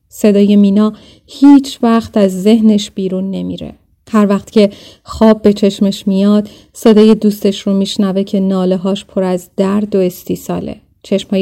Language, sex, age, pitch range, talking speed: Persian, female, 30-49, 190-215 Hz, 145 wpm